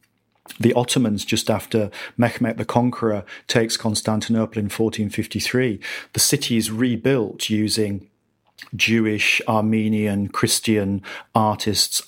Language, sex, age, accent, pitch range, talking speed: English, male, 40-59, British, 105-115 Hz, 100 wpm